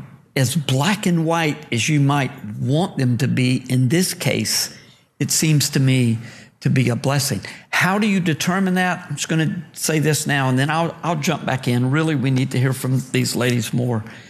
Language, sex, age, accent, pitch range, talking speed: English, male, 50-69, American, 125-165 Hz, 205 wpm